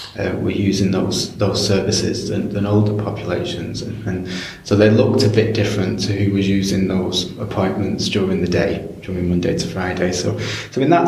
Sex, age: male, 20-39